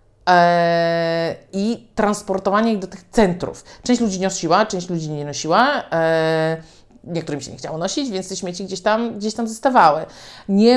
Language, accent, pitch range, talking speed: Polish, native, 165-215 Hz, 150 wpm